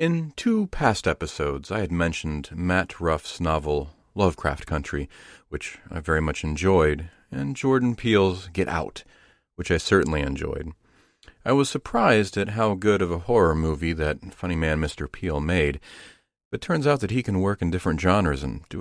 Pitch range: 75-90 Hz